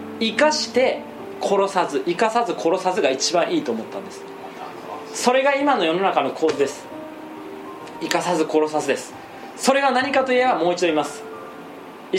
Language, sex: Japanese, male